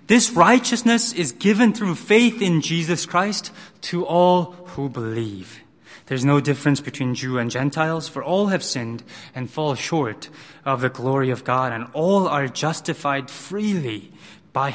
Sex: male